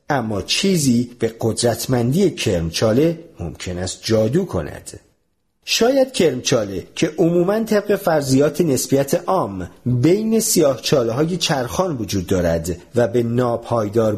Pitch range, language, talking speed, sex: 110-170 Hz, Persian, 105 wpm, male